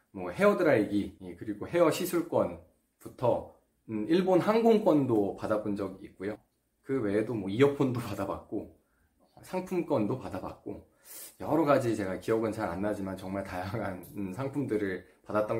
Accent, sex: native, male